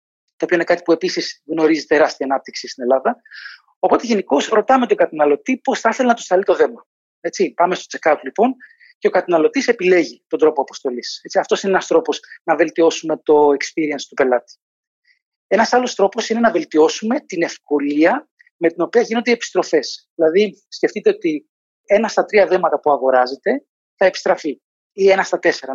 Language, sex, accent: Greek, male, native